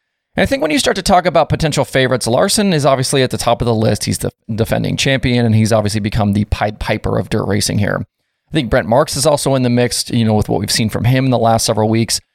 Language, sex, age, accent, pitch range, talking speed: English, male, 30-49, American, 110-135 Hz, 270 wpm